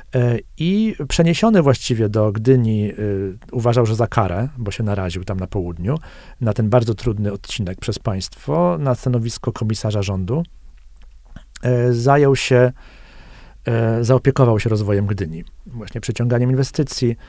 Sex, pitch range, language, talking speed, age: male, 105-130 Hz, Polish, 120 wpm, 40-59